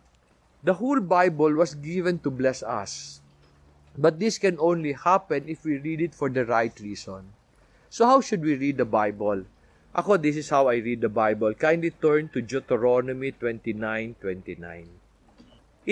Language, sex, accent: English, male, Filipino